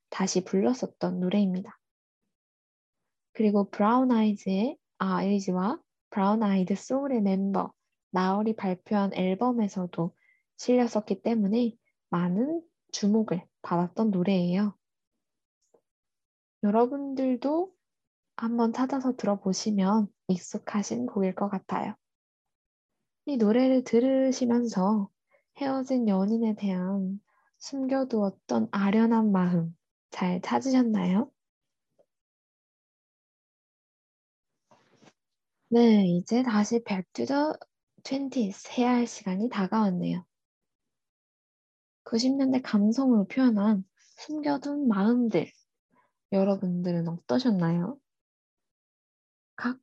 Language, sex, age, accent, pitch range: Korean, female, 20-39, native, 190-245 Hz